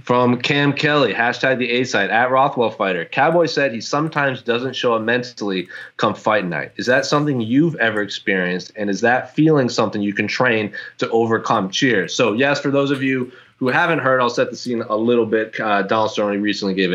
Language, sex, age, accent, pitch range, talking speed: English, male, 20-39, American, 105-130 Hz, 205 wpm